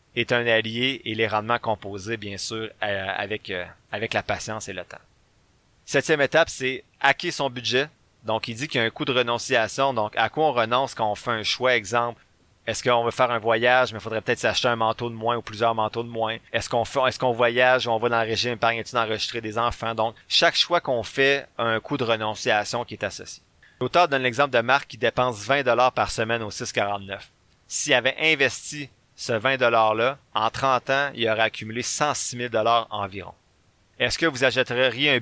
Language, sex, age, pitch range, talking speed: French, male, 30-49, 110-130 Hz, 215 wpm